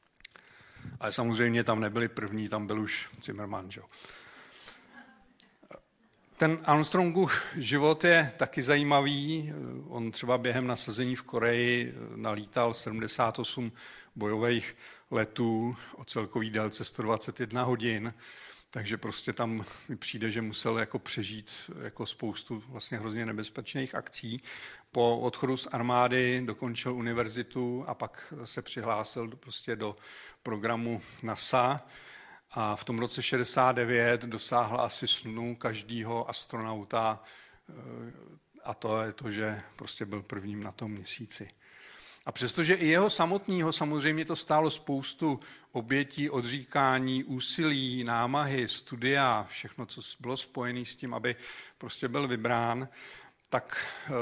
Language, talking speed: Czech, 115 wpm